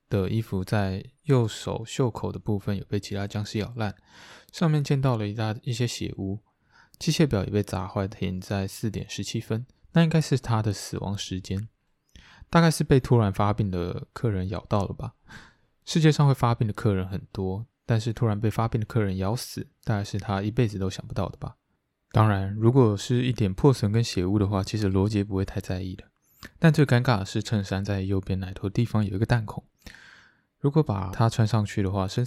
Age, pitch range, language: 20-39, 100-120 Hz, Chinese